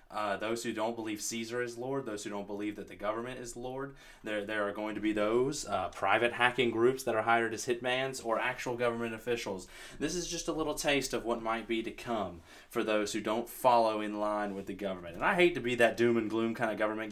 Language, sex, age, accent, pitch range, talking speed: English, male, 30-49, American, 105-120 Hz, 250 wpm